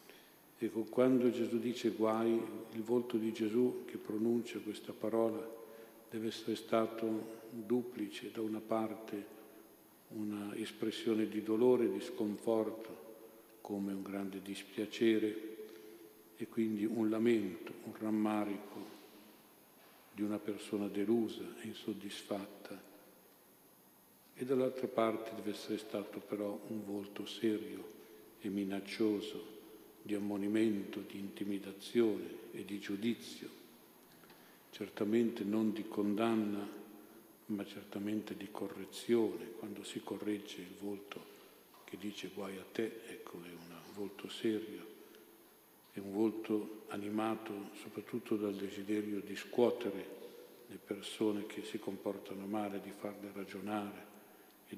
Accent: native